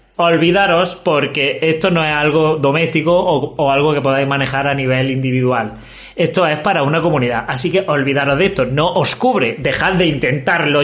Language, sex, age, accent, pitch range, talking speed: Spanish, male, 30-49, Spanish, 140-180 Hz, 175 wpm